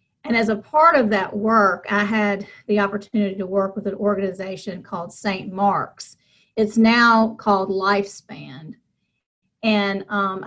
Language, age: English, 40-59